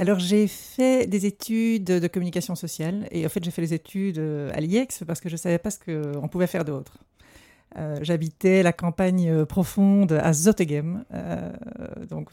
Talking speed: 175 wpm